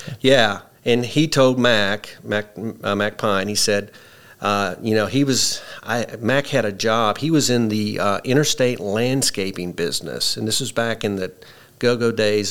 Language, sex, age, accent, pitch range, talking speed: English, male, 50-69, American, 100-125 Hz, 175 wpm